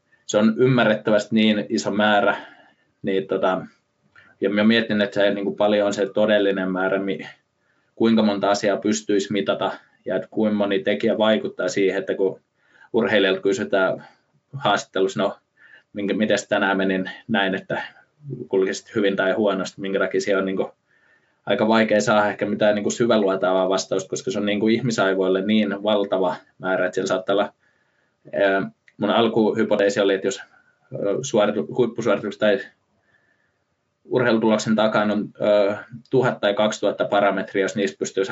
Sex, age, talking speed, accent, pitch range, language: male, 20-39, 145 wpm, native, 95-105 Hz, Finnish